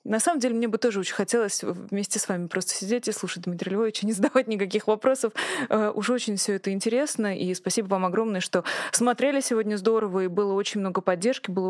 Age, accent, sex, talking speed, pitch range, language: 20-39, native, female, 205 wpm, 195-235 Hz, Russian